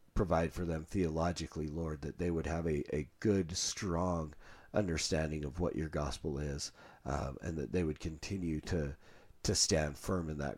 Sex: male